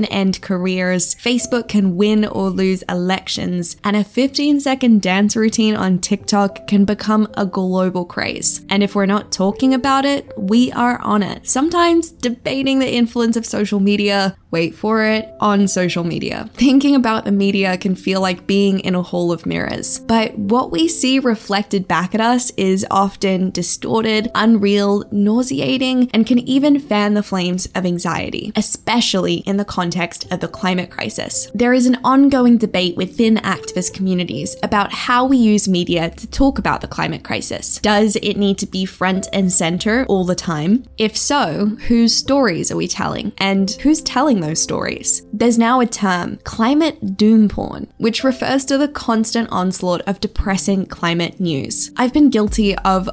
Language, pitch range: English, 190-235 Hz